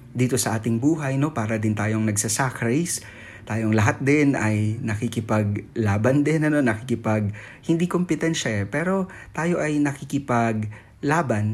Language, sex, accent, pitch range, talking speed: Filipino, male, native, 105-130 Hz, 125 wpm